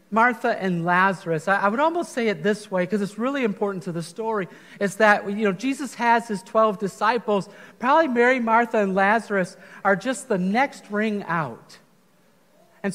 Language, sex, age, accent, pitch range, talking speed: English, male, 50-69, American, 195-230 Hz, 175 wpm